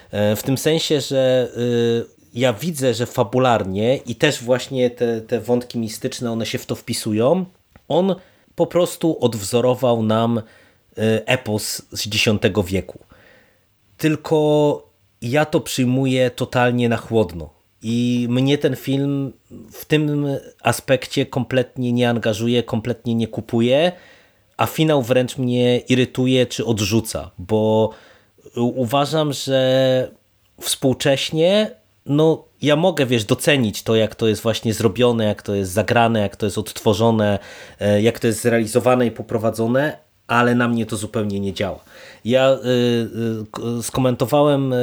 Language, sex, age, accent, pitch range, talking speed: Polish, male, 30-49, native, 110-130 Hz, 125 wpm